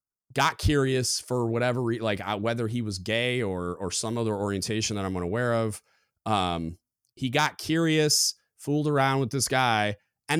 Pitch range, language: 100-140 Hz, English